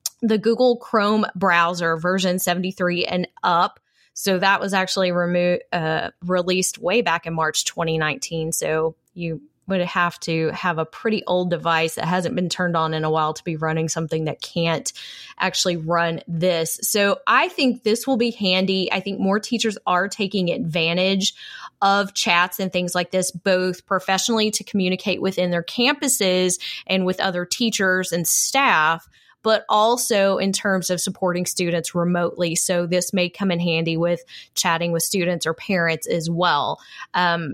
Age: 20-39